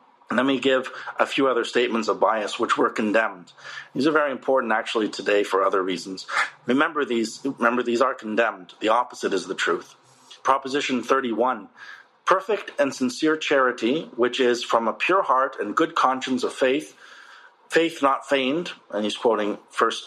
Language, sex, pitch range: English, male, 120-155 Hz